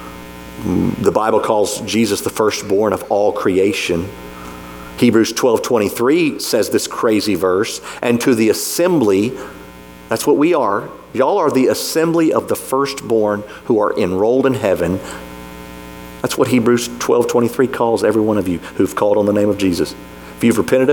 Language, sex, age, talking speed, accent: English, male, 50-69, 155 wpm, American